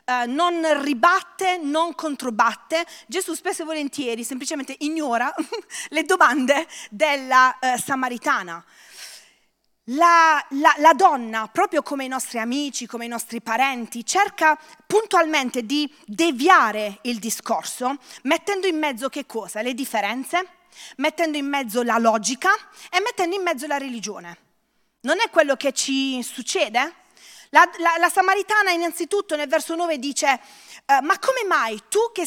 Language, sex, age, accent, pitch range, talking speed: English, female, 30-49, Italian, 250-340 Hz, 130 wpm